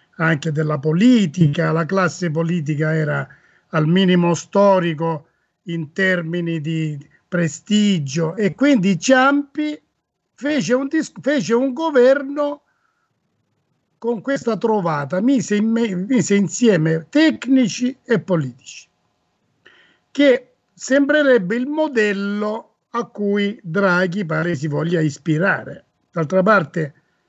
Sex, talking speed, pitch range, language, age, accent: male, 90 wpm, 160-230 Hz, Italian, 50-69, native